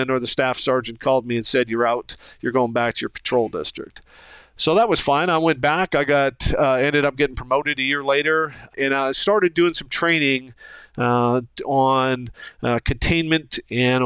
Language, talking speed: English, 190 wpm